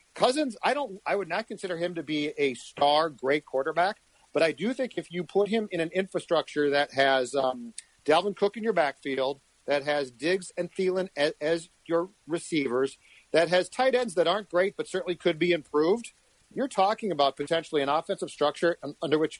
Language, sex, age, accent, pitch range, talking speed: English, male, 40-59, American, 145-185 Hz, 195 wpm